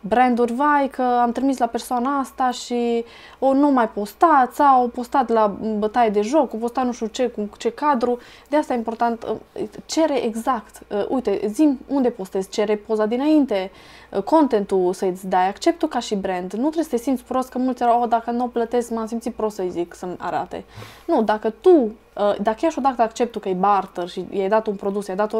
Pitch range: 195-255 Hz